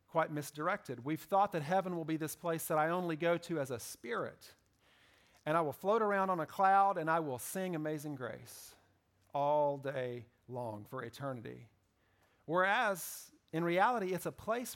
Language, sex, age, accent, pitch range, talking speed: English, male, 40-59, American, 130-185 Hz, 175 wpm